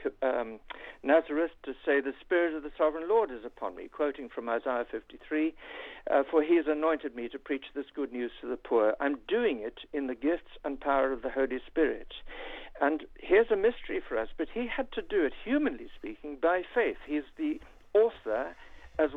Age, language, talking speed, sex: 60-79, English, 195 wpm, male